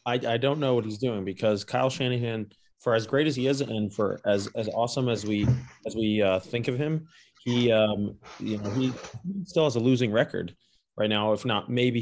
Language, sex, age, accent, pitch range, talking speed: English, male, 20-39, American, 110-135 Hz, 220 wpm